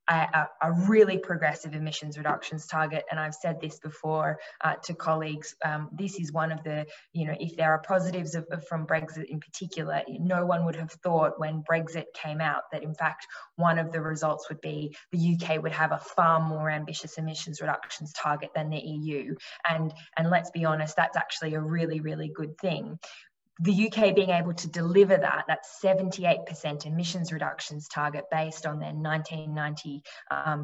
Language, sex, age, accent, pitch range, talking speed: English, female, 20-39, Australian, 155-180 Hz, 180 wpm